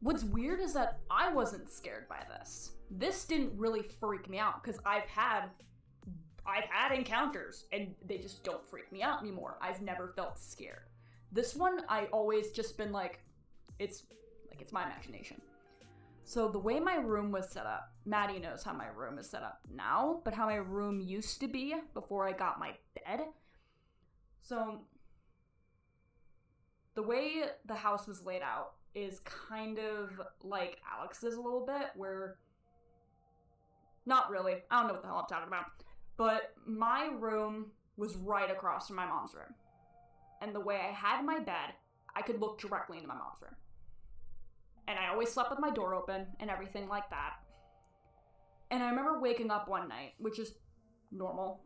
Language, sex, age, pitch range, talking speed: English, female, 10-29, 190-235 Hz, 175 wpm